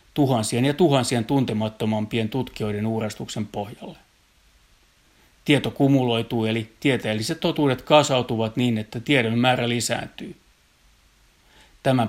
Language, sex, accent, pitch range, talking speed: Finnish, male, native, 110-130 Hz, 95 wpm